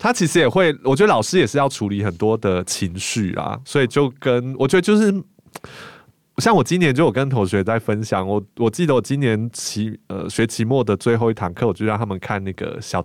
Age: 20-39